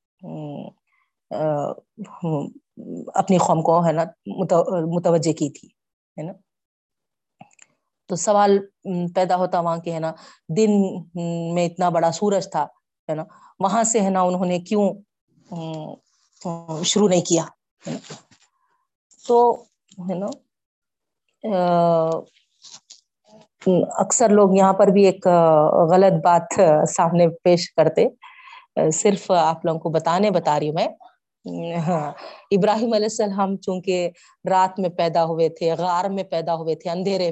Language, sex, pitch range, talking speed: Urdu, female, 165-205 Hz, 110 wpm